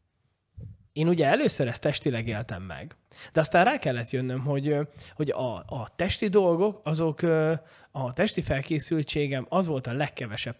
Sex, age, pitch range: male, 20-39, 120-160 Hz